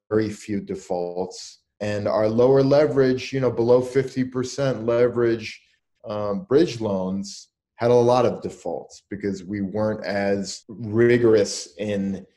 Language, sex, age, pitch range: English, male, 30-49, 95-110 Hz